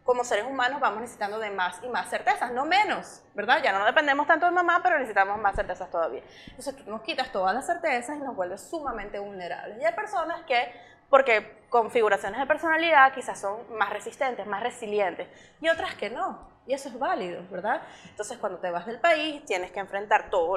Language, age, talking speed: Spanish, 20-39, 200 wpm